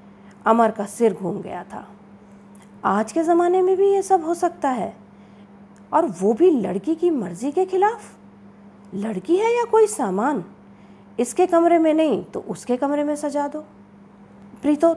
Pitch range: 200-290 Hz